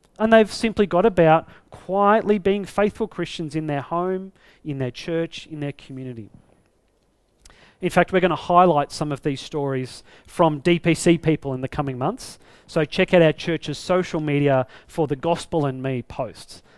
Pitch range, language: 145-205 Hz, English